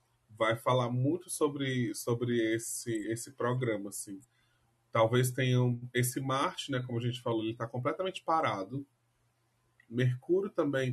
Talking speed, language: 130 wpm, Portuguese